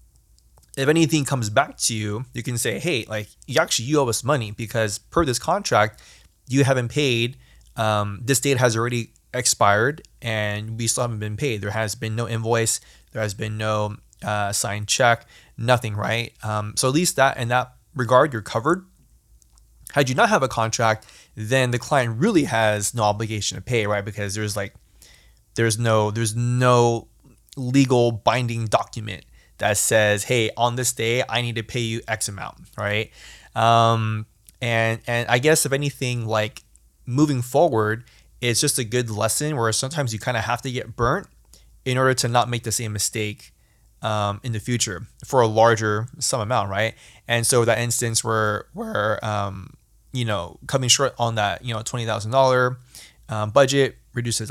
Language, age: English, 20-39